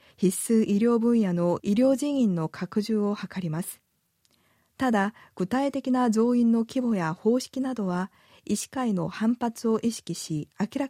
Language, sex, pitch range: Japanese, female, 180-235 Hz